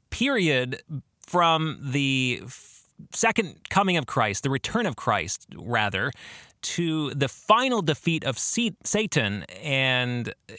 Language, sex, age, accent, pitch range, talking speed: English, male, 30-49, American, 115-150 Hz, 110 wpm